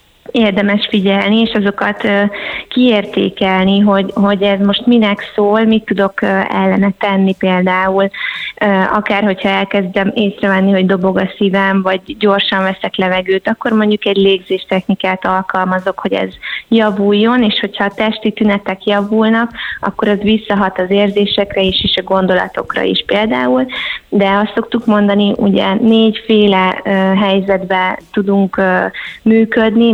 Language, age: Hungarian, 20-39